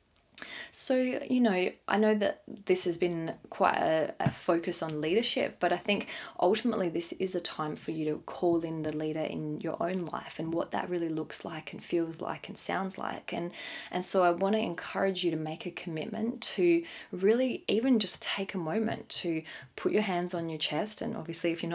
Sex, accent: female, Australian